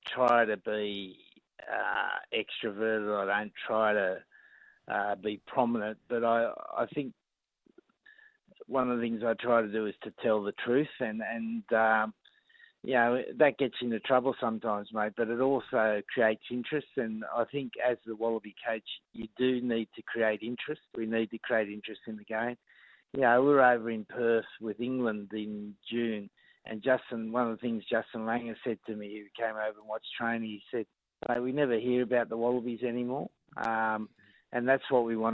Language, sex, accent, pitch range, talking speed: English, male, Australian, 110-125 Hz, 185 wpm